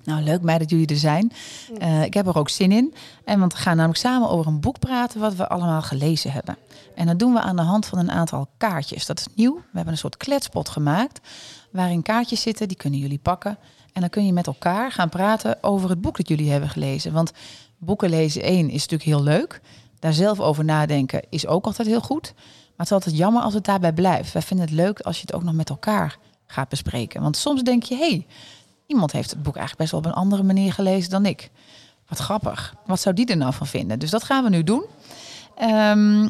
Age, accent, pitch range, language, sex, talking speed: 30-49, Dutch, 155-215 Hz, Dutch, female, 235 wpm